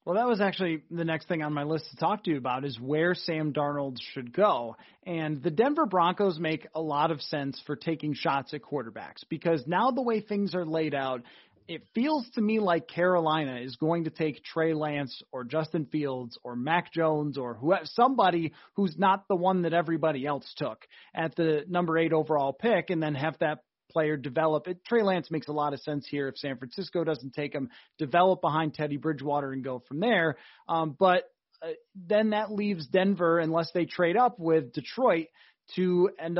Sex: male